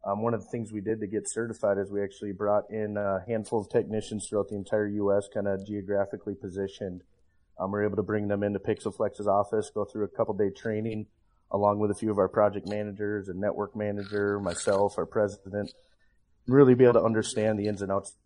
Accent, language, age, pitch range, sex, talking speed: American, English, 30-49, 95-105 Hz, male, 215 wpm